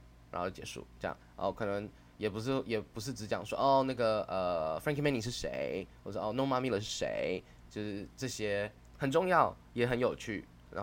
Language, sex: Chinese, male